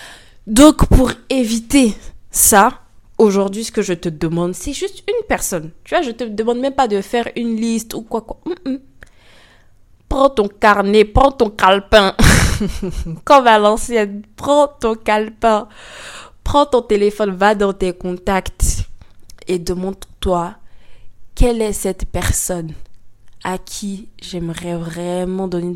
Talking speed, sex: 135 wpm, female